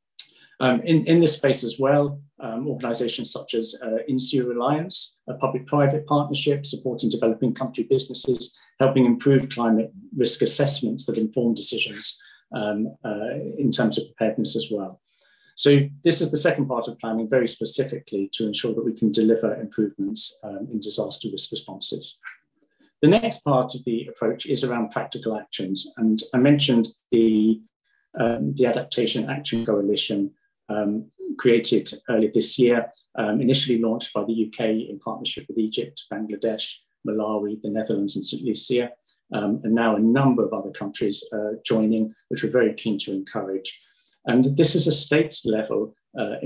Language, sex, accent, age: English, male, British, 40-59